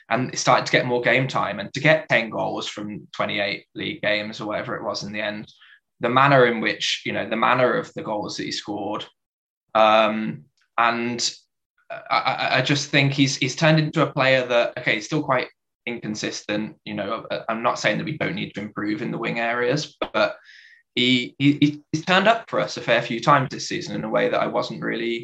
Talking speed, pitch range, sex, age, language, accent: 220 wpm, 120-150 Hz, male, 10-29, English, British